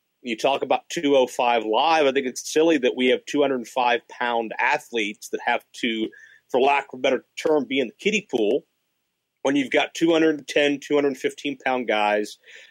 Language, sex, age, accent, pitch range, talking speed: English, male, 40-59, American, 115-145 Hz, 160 wpm